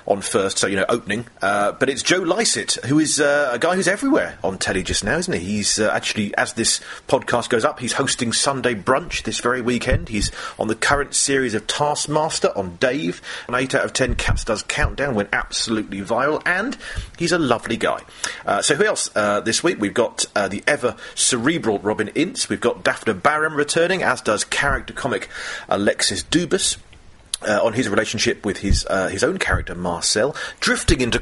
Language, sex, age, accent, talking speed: English, male, 40-59, British, 200 wpm